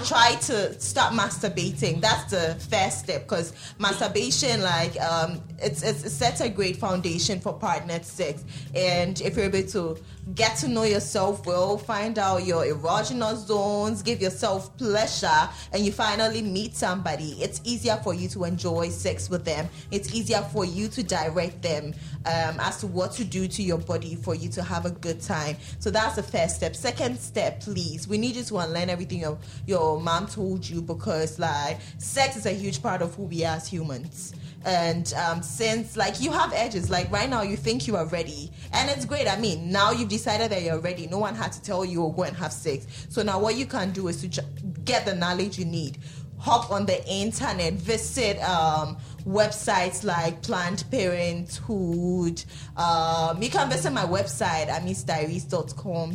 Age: 20-39